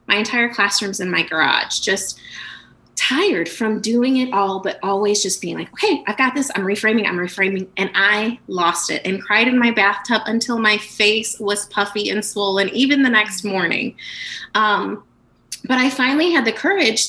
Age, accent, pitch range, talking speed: 20-39, American, 190-250 Hz, 185 wpm